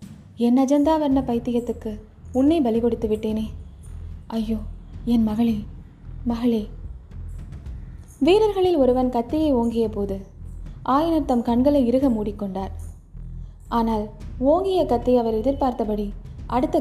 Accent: native